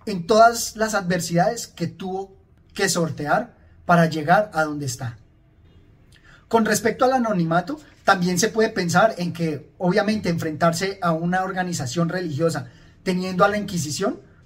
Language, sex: Spanish, male